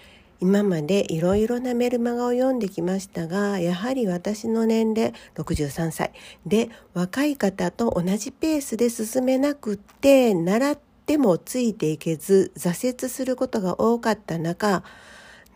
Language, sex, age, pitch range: Japanese, female, 50-69, 175-235 Hz